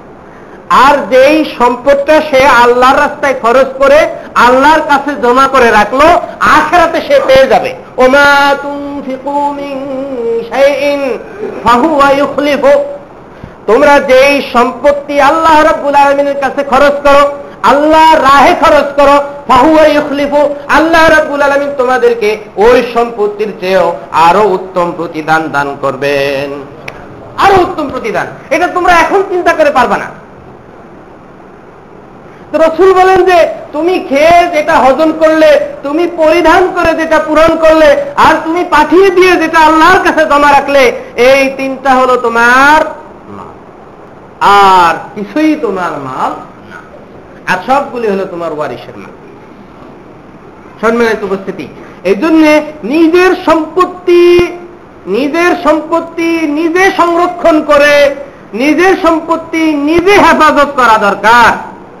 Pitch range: 255-320 Hz